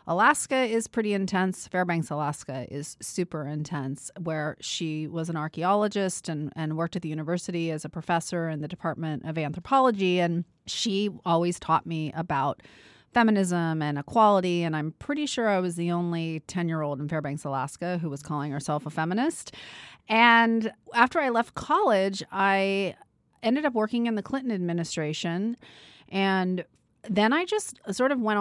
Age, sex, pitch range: 30-49, female, 160-205 Hz